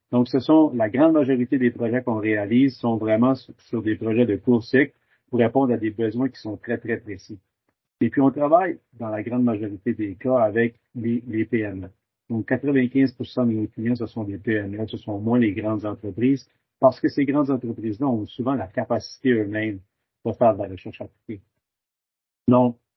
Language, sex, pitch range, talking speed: English, male, 110-125 Hz, 195 wpm